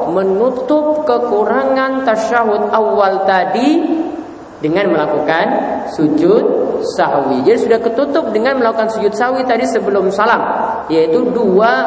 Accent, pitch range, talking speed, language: Indonesian, 200-265 Hz, 105 wpm, English